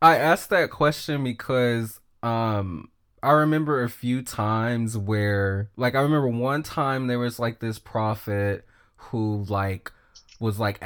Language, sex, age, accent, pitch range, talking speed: English, male, 20-39, American, 105-120 Hz, 145 wpm